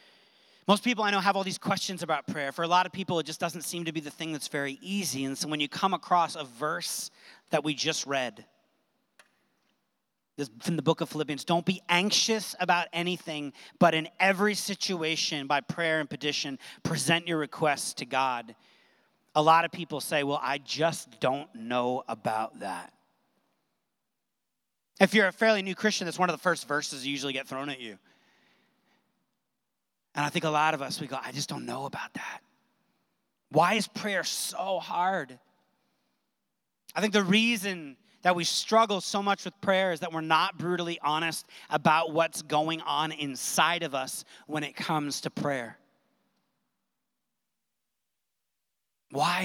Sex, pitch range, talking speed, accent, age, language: male, 150-190 Hz, 170 wpm, American, 40-59, English